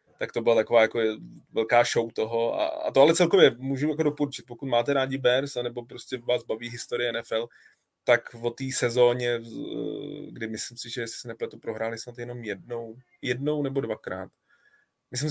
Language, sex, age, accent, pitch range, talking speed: Czech, male, 20-39, native, 115-135 Hz, 175 wpm